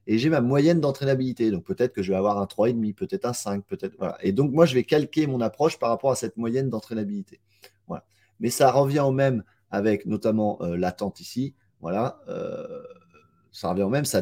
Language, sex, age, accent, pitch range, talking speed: French, male, 30-49, French, 100-125 Hz, 210 wpm